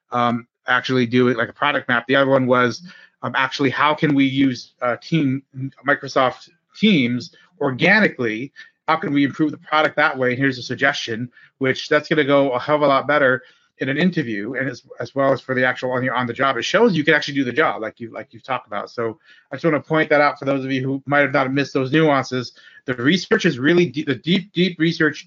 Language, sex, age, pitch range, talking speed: English, male, 30-49, 125-155 Hz, 245 wpm